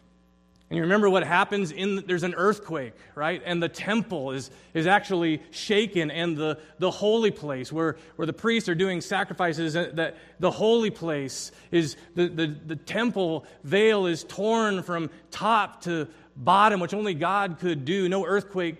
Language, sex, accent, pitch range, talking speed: English, male, American, 125-185 Hz, 170 wpm